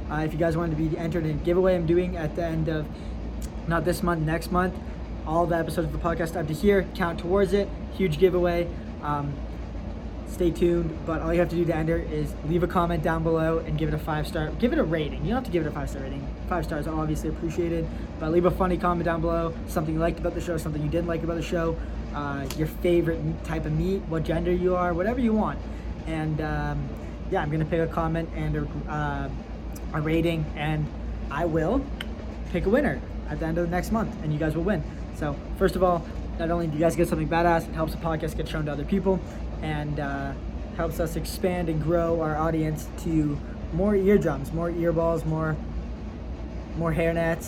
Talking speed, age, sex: 225 wpm, 20-39, male